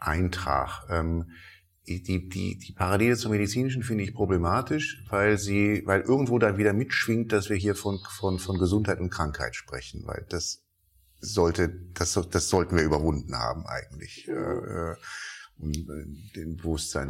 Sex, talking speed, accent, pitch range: male, 155 wpm, German, 80-100 Hz